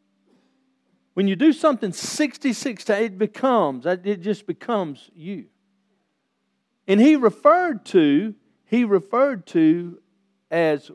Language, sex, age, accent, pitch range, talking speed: English, male, 50-69, American, 170-240 Hz, 110 wpm